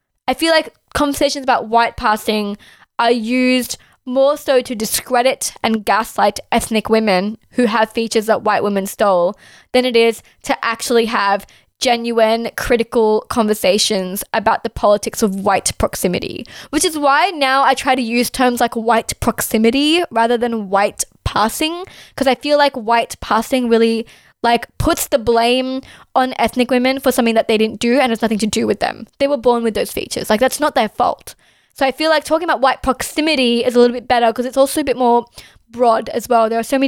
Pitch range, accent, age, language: 230-270 Hz, Australian, 10-29, English